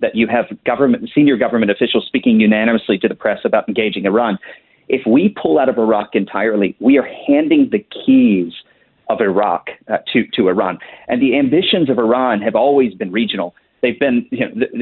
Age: 40-59